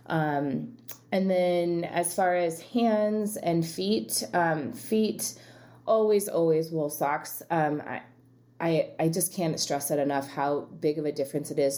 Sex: female